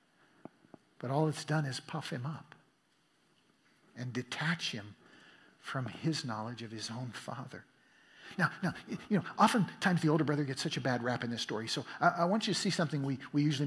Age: 50-69